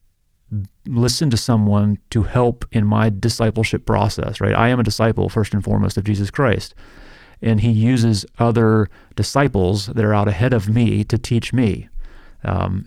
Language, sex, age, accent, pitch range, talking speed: English, male, 40-59, American, 105-115 Hz, 165 wpm